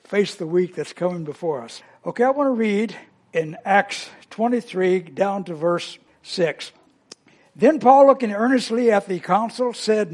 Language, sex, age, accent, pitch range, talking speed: English, male, 60-79, American, 195-240 Hz, 160 wpm